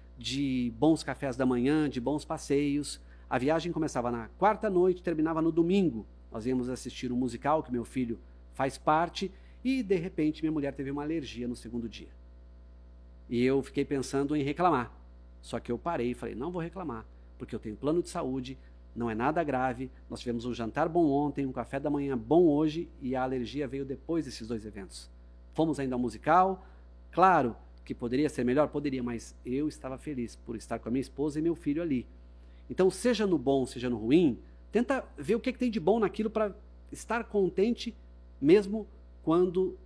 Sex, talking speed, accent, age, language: male, 190 wpm, Brazilian, 40-59, Portuguese